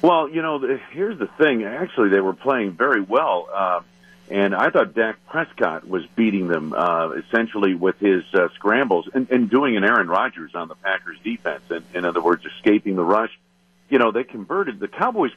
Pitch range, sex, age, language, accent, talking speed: 85-110 Hz, male, 50-69, English, American, 195 wpm